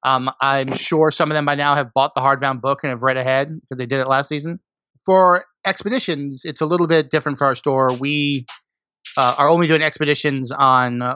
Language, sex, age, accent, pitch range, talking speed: English, male, 30-49, American, 125-150 Hz, 215 wpm